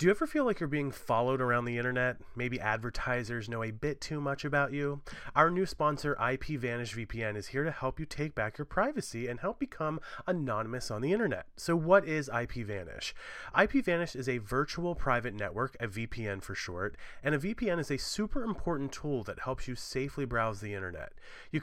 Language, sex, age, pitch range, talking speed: English, male, 30-49, 115-155 Hz, 195 wpm